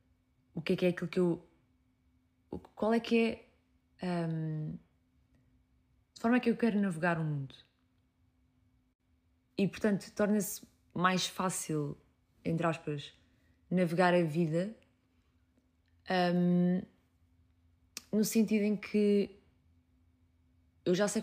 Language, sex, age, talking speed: Portuguese, female, 20-39, 110 wpm